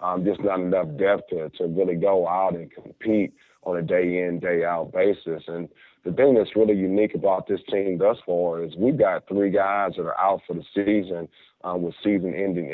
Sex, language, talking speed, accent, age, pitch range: male, English, 200 wpm, American, 30-49, 85-95 Hz